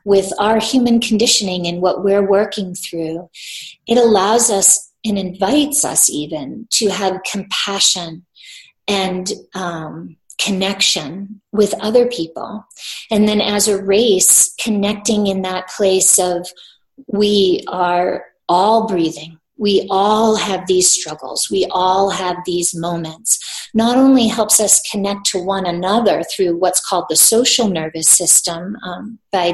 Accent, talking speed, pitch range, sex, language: American, 135 wpm, 180-220 Hz, female, English